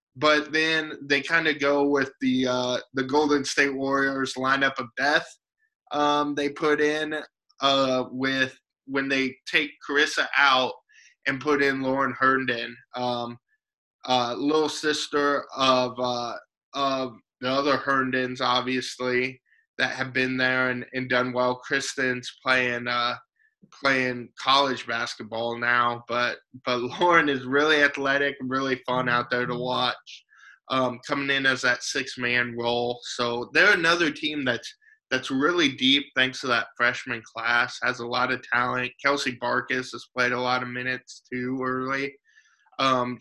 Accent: American